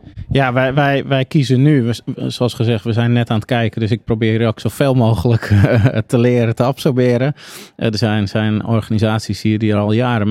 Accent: Dutch